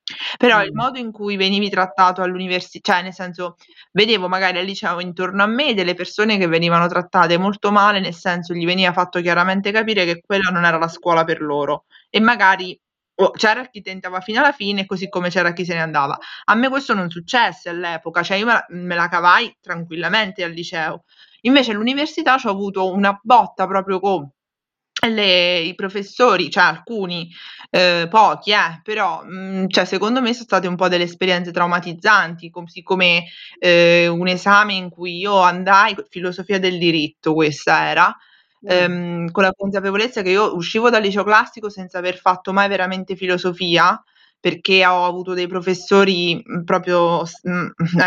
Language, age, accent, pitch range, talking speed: Italian, 20-39, native, 175-200 Hz, 170 wpm